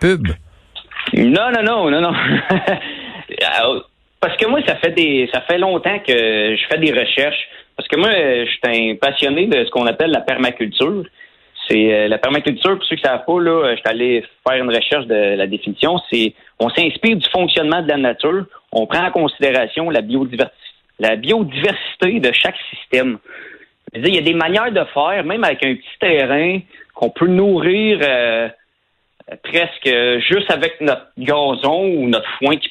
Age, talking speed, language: 30-49, 180 wpm, French